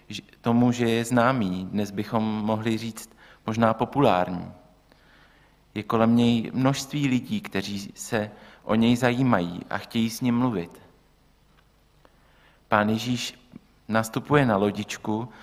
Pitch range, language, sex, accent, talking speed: 110-125 Hz, Czech, male, native, 115 wpm